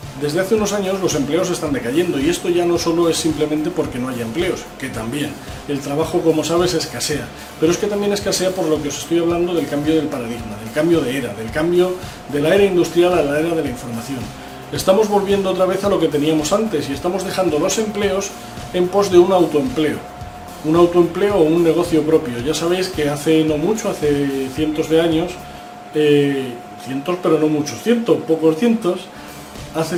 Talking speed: 200 wpm